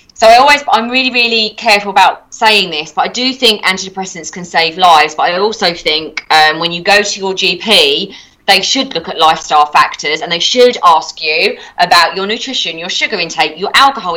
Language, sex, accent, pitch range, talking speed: English, female, British, 170-225 Hz, 205 wpm